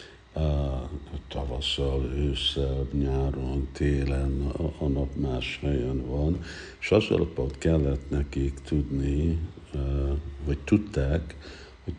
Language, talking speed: Hungarian, 85 wpm